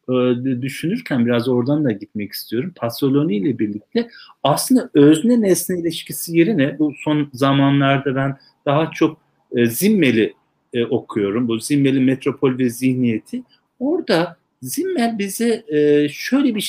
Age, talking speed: 60-79, 115 wpm